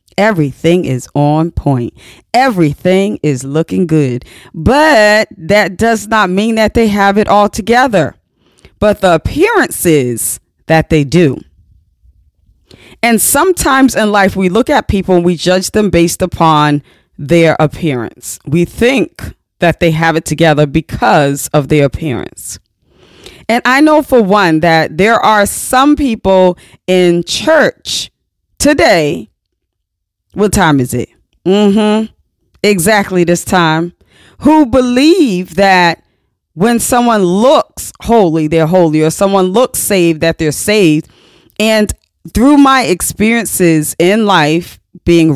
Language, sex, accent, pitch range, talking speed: English, female, American, 155-215 Hz, 130 wpm